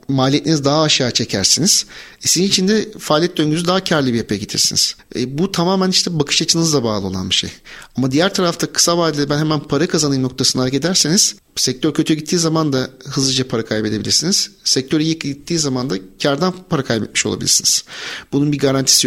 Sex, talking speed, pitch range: male, 175 wpm, 120-145 Hz